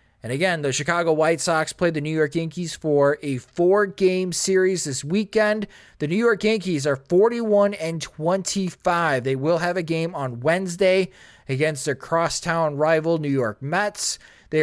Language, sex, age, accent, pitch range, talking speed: English, male, 20-39, American, 145-185 Hz, 160 wpm